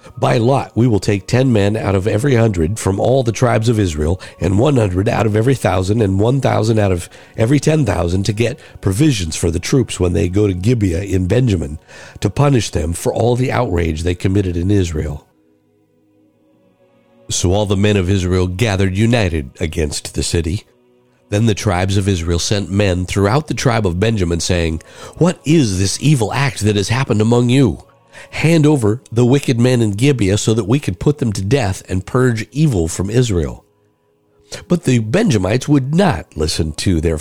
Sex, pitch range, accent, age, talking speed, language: male, 90-125 Hz, American, 50-69, 185 wpm, English